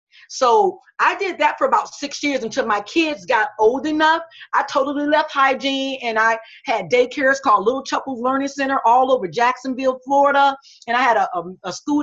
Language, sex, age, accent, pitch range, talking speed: English, female, 40-59, American, 215-285 Hz, 185 wpm